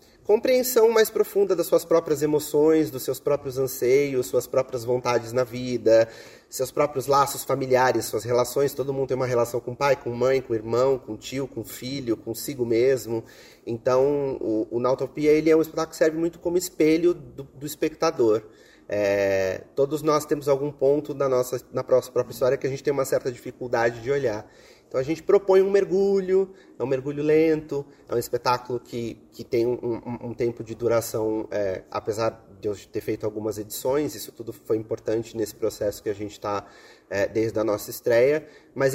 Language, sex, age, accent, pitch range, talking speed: Portuguese, male, 30-49, Brazilian, 120-160 Hz, 190 wpm